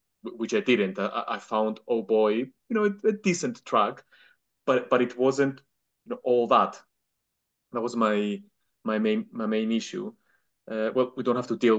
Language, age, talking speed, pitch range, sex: English, 20-39, 190 wpm, 110-130 Hz, male